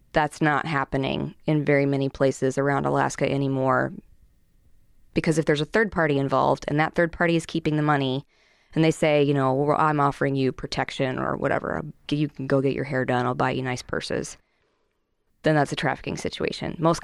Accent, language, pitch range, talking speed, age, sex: American, English, 140-160 Hz, 190 wpm, 20-39, female